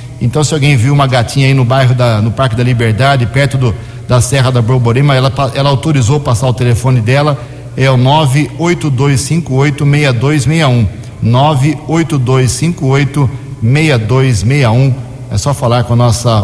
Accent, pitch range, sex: Brazilian, 120-145 Hz, male